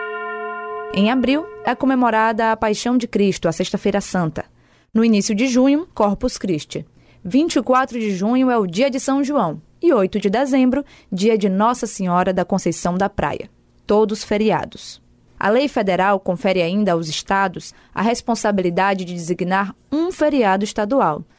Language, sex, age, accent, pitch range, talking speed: Portuguese, female, 20-39, Brazilian, 185-250 Hz, 150 wpm